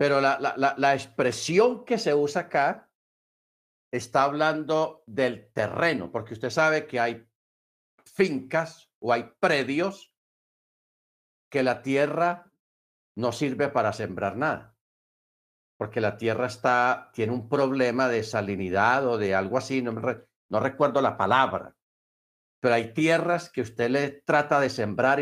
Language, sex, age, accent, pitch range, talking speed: Spanish, male, 50-69, Spanish, 115-145 Hz, 145 wpm